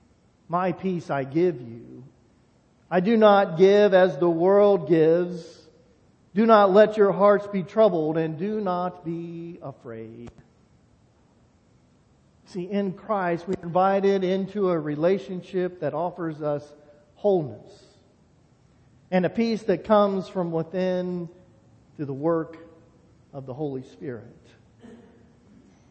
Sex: male